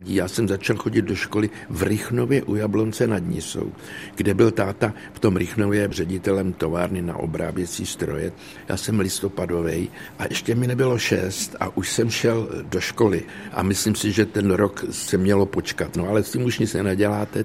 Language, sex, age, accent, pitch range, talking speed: Czech, male, 60-79, native, 95-110 Hz, 180 wpm